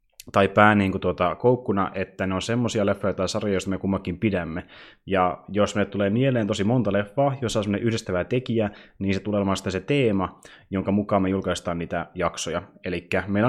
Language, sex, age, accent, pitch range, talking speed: Finnish, male, 20-39, native, 90-110 Hz, 185 wpm